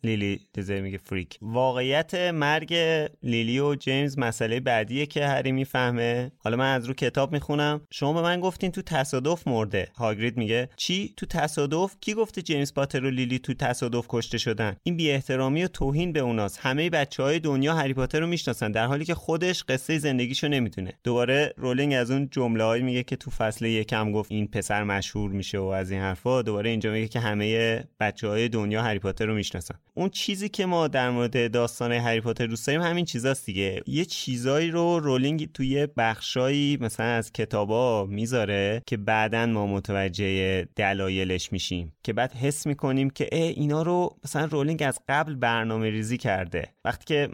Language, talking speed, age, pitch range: Persian, 170 wpm, 30-49, 110-145 Hz